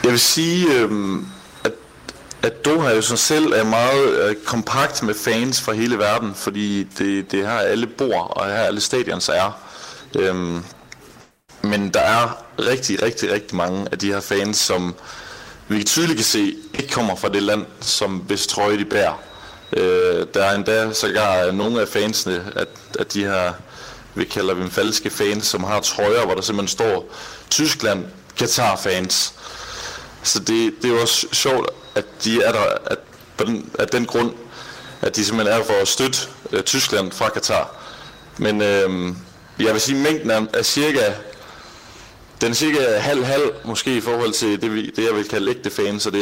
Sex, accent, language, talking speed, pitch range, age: male, native, Danish, 175 wpm, 100-125 Hz, 30-49